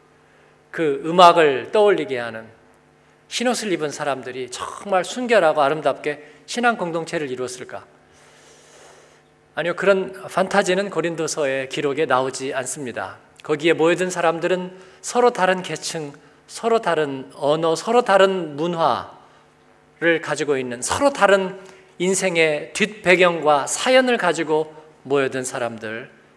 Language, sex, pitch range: Korean, male, 150-195 Hz